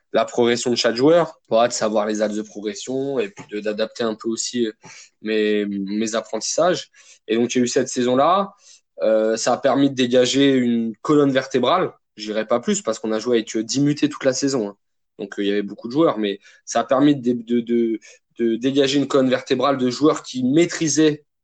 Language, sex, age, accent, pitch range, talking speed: French, male, 20-39, French, 110-135 Hz, 210 wpm